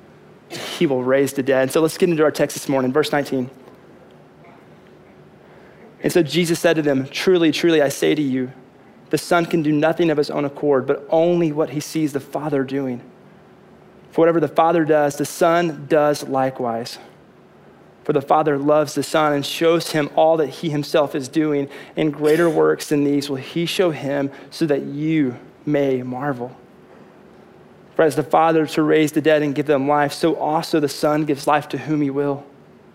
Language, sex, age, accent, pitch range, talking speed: English, male, 30-49, American, 140-165 Hz, 190 wpm